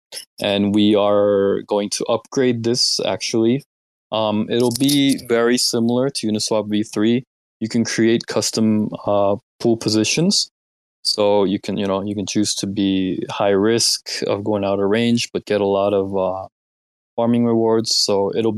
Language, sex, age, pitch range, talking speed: English, male, 20-39, 105-120 Hz, 160 wpm